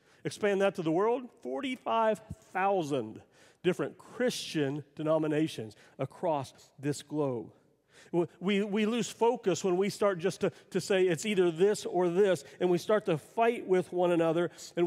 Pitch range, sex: 175-230 Hz, male